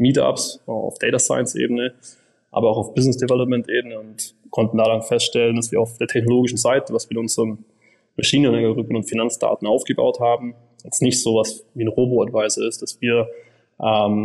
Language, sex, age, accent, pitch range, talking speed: German, male, 20-39, German, 115-130 Hz, 180 wpm